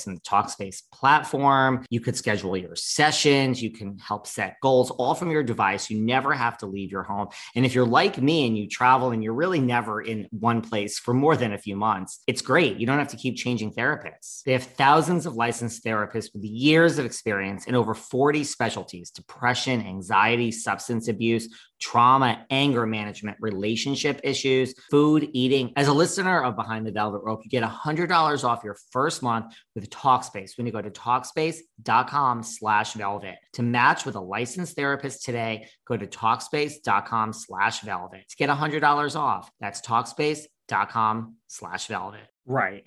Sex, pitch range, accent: male, 110-140 Hz, American